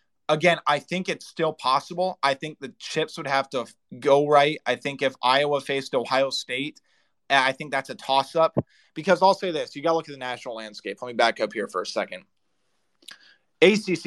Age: 20-39